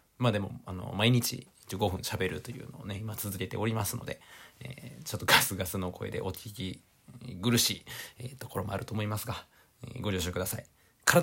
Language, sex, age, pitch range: Japanese, male, 40-59, 105-130 Hz